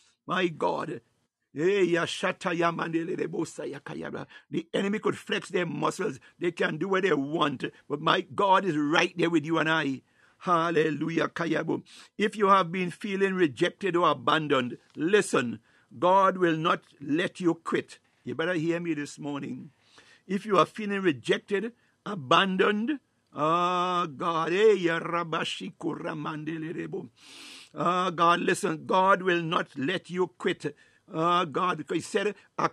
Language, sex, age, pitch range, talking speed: English, male, 60-79, 165-195 Hz, 130 wpm